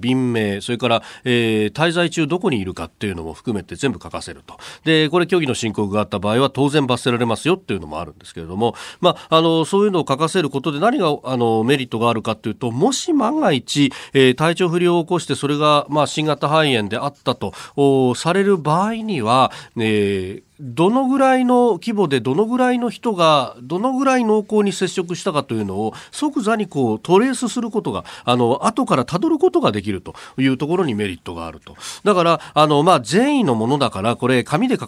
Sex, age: male, 40-59